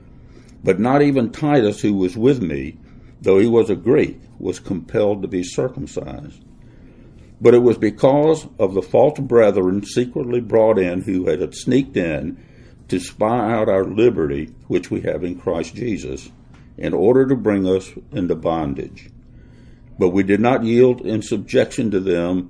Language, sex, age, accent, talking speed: English, male, 60-79, American, 160 wpm